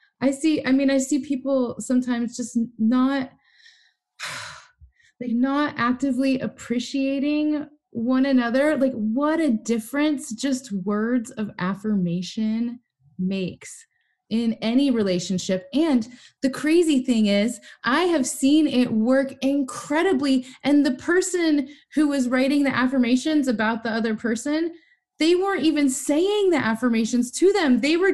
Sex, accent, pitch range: female, American, 230-305 Hz